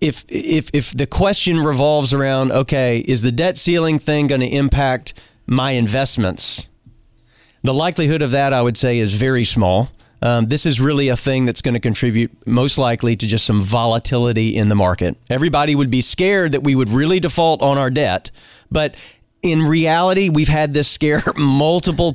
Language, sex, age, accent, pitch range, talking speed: English, male, 40-59, American, 125-155 Hz, 180 wpm